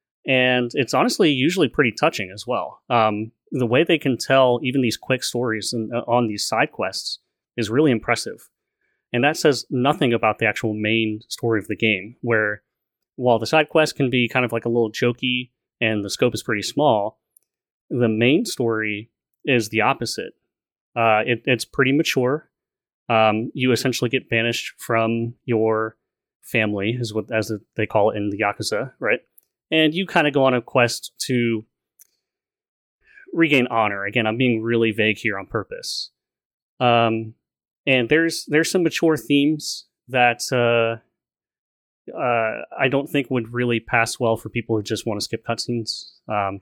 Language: English